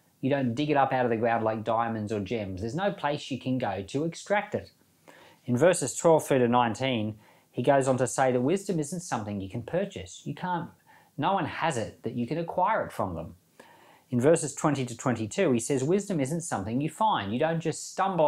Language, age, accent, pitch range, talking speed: English, 40-59, Australian, 110-150 Hz, 225 wpm